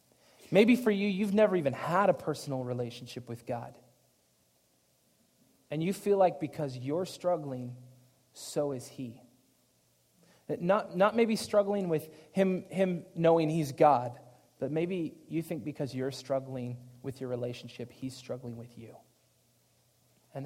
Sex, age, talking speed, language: male, 30-49, 140 wpm, English